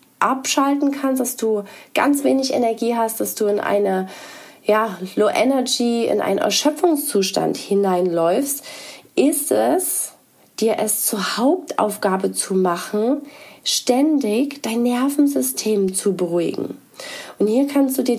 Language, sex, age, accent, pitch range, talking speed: German, female, 30-49, German, 205-275 Hz, 120 wpm